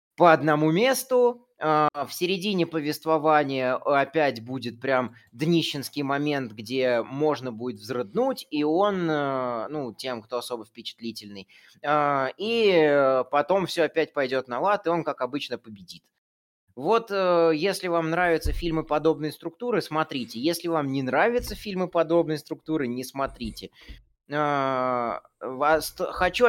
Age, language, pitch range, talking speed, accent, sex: 20-39, Russian, 130-170 Hz, 120 wpm, native, male